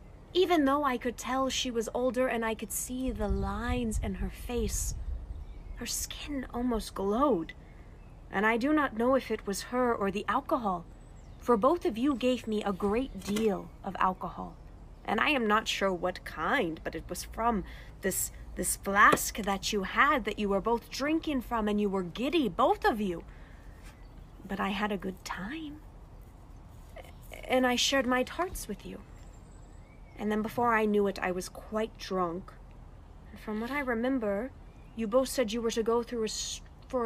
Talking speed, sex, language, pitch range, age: 180 wpm, female, English, 195-255 Hz, 30-49